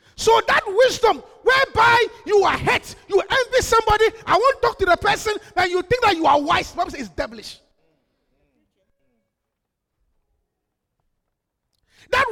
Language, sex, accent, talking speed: English, male, Nigerian, 140 wpm